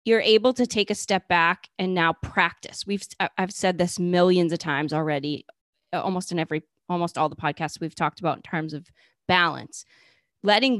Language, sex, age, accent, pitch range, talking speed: English, female, 30-49, American, 165-215 Hz, 185 wpm